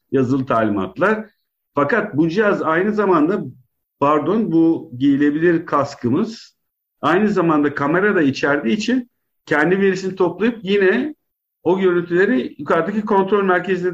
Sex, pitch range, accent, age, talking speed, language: male, 140-195 Hz, native, 50-69, 110 wpm, Turkish